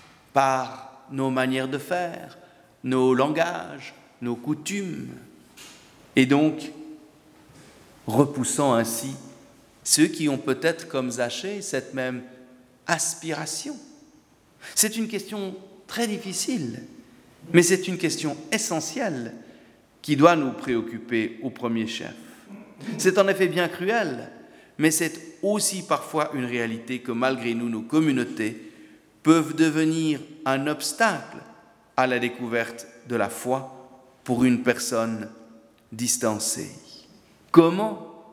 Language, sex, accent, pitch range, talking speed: French, male, French, 125-175 Hz, 110 wpm